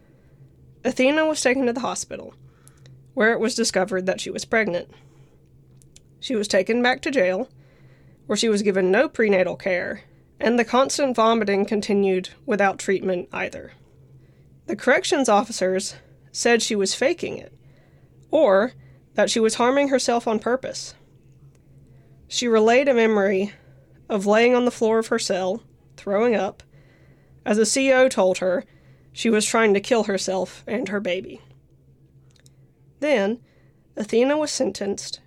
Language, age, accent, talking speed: English, 20-39, American, 140 wpm